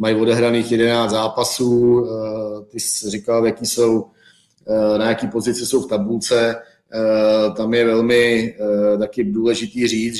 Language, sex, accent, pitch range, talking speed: Czech, male, native, 105-115 Hz, 125 wpm